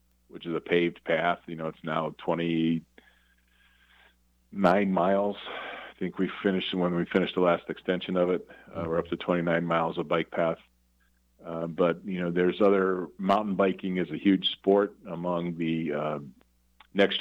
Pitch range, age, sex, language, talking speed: 80-95 Hz, 40-59, male, English, 165 wpm